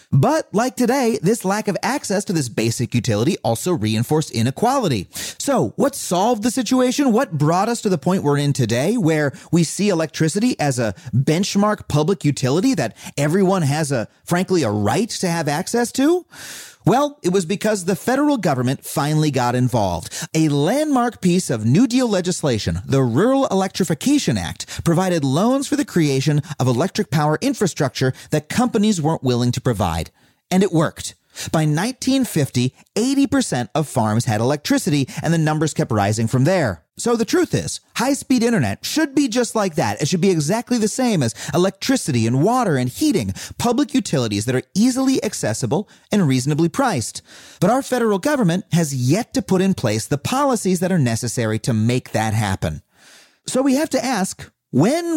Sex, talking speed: male, 170 wpm